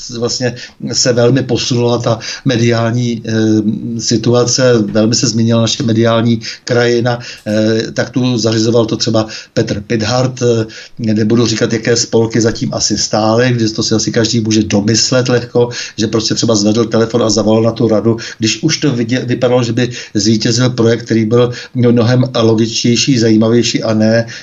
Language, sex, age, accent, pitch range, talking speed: Czech, male, 60-79, native, 115-130 Hz, 155 wpm